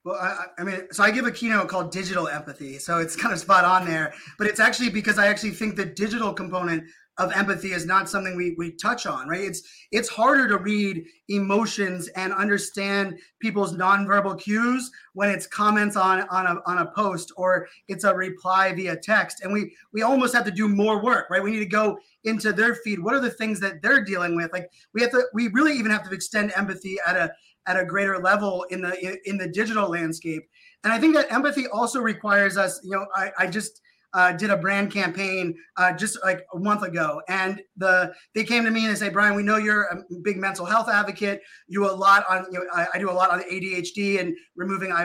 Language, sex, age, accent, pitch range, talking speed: English, male, 30-49, American, 180-215 Hz, 225 wpm